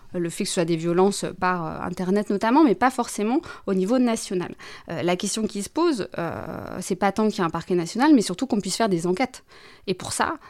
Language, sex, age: French, female, 20-39